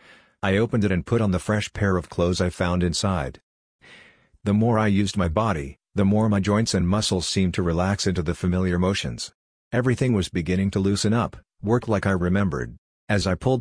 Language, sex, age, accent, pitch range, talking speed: English, male, 50-69, American, 90-105 Hz, 205 wpm